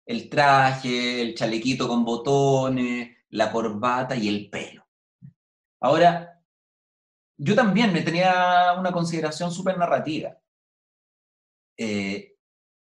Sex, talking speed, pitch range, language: male, 100 wpm, 140-200 Hz, Spanish